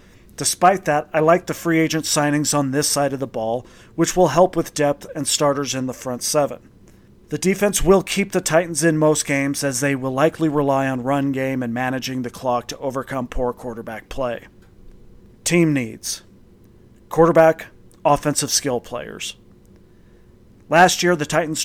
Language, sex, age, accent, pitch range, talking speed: English, male, 40-59, American, 130-160 Hz, 170 wpm